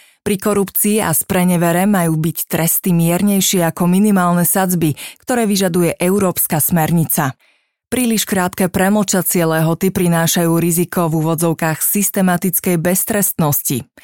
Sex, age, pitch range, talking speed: female, 30-49, 165-190 Hz, 105 wpm